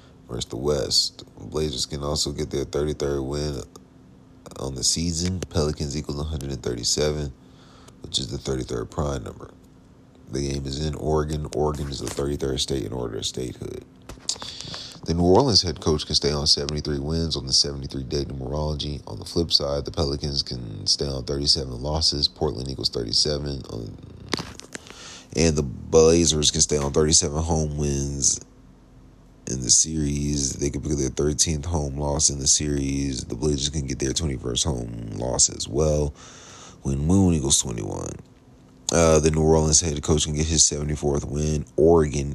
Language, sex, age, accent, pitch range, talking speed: English, male, 30-49, American, 70-80 Hz, 160 wpm